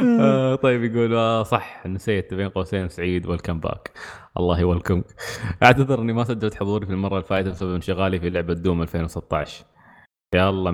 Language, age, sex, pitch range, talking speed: Arabic, 20-39, male, 95-110 Hz, 155 wpm